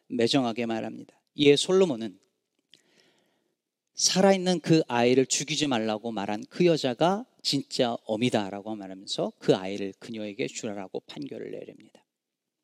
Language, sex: Korean, male